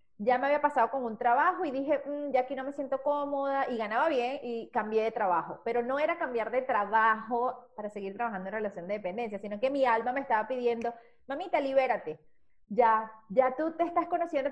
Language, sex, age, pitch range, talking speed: Spanish, female, 30-49, 215-265 Hz, 205 wpm